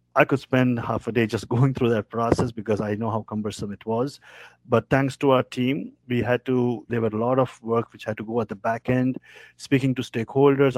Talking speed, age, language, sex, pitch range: 240 wpm, 50-69, English, male, 115-135 Hz